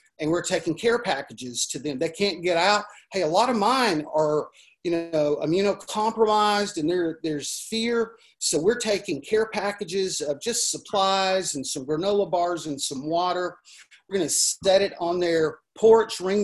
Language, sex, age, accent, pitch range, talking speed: English, male, 40-59, American, 165-205 Hz, 170 wpm